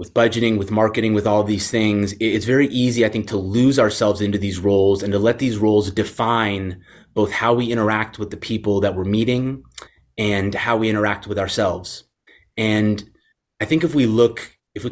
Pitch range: 100-115 Hz